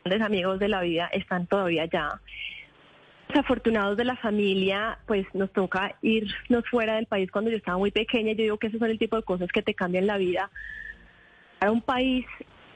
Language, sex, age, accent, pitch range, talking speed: Spanish, female, 20-39, Colombian, 190-235 Hz, 190 wpm